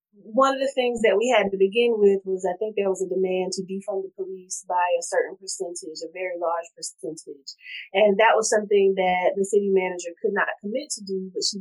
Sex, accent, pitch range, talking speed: female, American, 185-220 Hz, 225 wpm